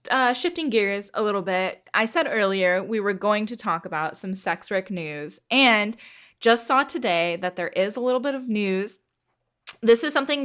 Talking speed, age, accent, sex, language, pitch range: 195 wpm, 10-29, American, female, English, 175-215 Hz